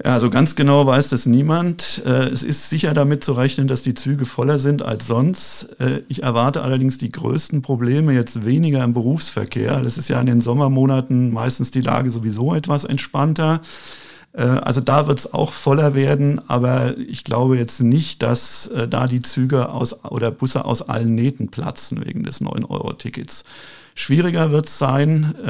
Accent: German